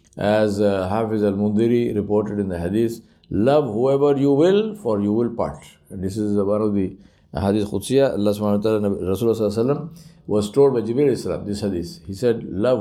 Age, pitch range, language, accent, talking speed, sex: 50-69, 95-125 Hz, English, Indian, 190 wpm, male